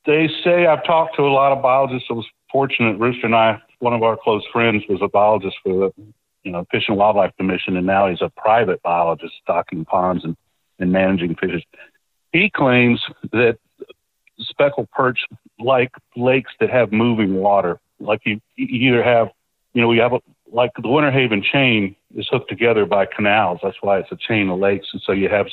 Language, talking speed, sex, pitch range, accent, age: English, 200 wpm, male, 100-135 Hz, American, 60-79